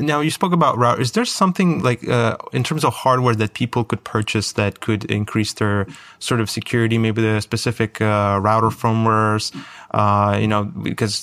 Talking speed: 185 wpm